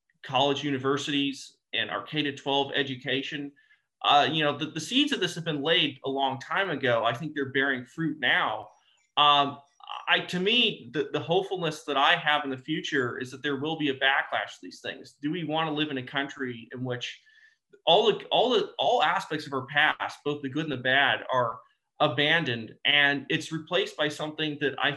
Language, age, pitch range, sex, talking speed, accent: English, 30-49, 140-170 Hz, male, 205 wpm, American